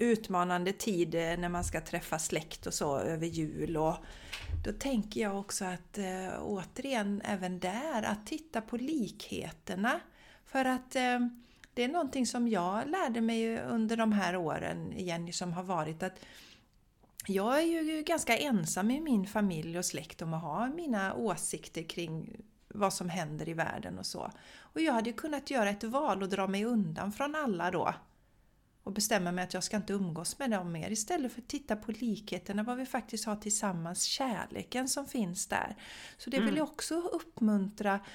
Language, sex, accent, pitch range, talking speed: Swedish, female, native, 185-235 Hz, 175 wpm